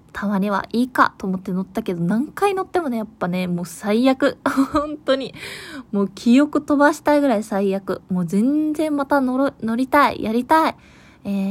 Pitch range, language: 195-270 Hz, Japanese